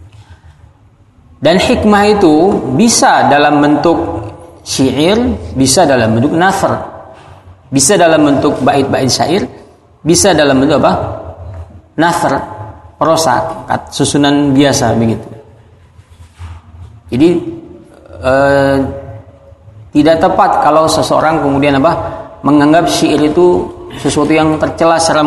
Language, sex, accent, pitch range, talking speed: Indonesian, male, native, 95-150 Hz, 95 wpm